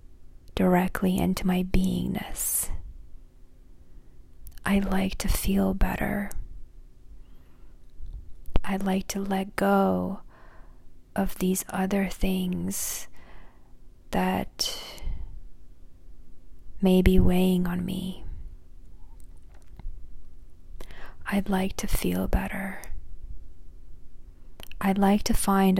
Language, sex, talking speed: English, female, 75 wpm